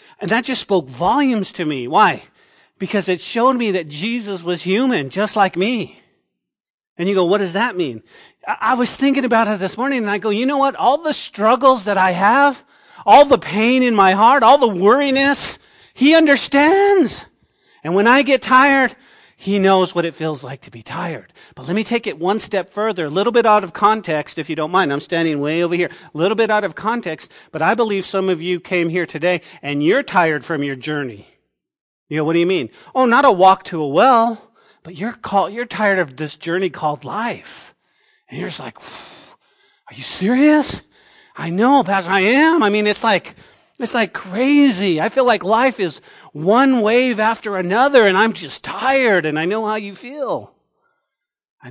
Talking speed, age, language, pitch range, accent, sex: 205 wpm, 40-59, English, 185-245 Hz, American, male